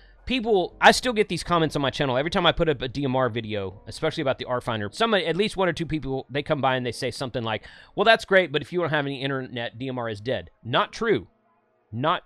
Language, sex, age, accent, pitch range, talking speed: English, male, 30-49, American, 130-180 Hz, 255 wpm